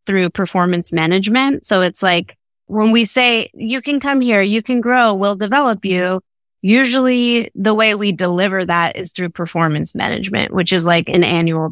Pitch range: 175-220 Hz